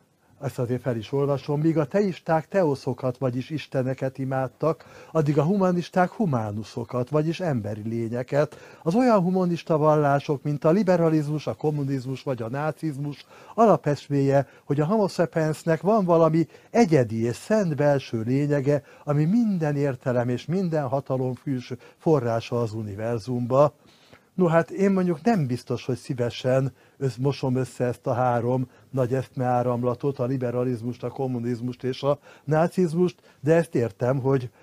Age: 60-79